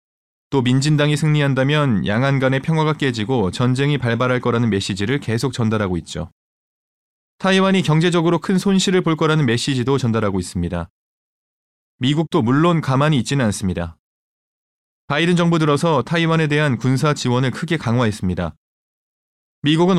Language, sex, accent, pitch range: Korean, male, native, 120-165 Hz